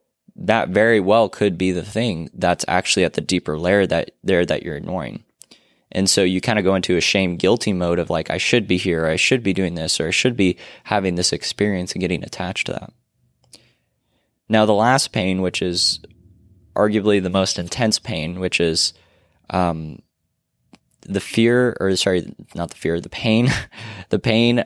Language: English